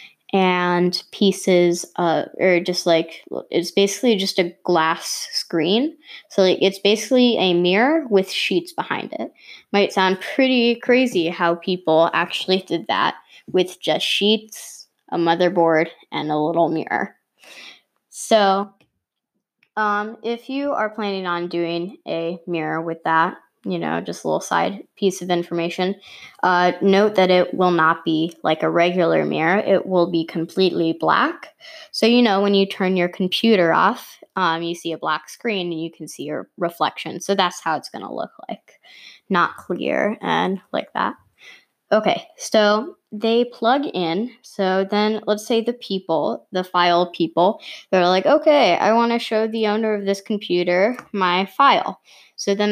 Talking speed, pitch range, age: 160 wpm, 170-215 Hz, 10-29